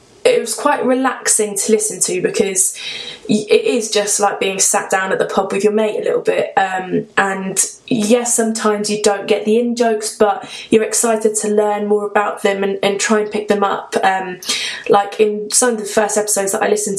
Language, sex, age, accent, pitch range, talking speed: English, female, 20-39, British, 210-245 Hz, 210 wpm